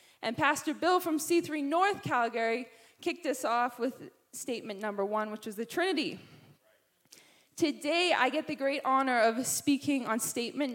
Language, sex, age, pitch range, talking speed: English, female, 20-39, 235-320 Hz, 155 wpm